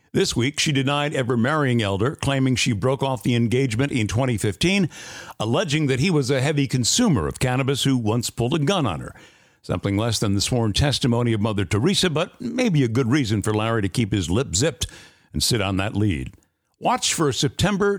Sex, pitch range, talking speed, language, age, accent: male, 115-150 Hz, 195 wpm, English, 60-79, American